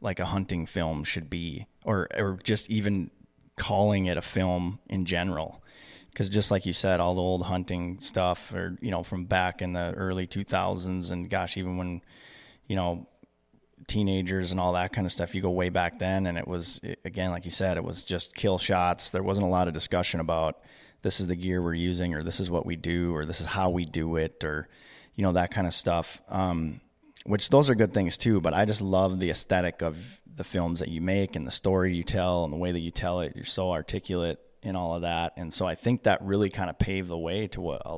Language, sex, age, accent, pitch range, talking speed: English, male, 20-39, American, 85-95 Hz, 235 wpm